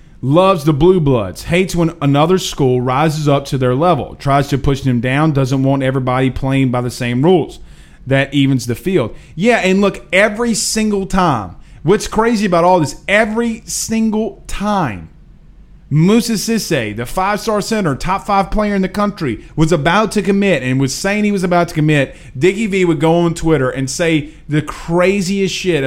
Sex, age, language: male, 30-49, English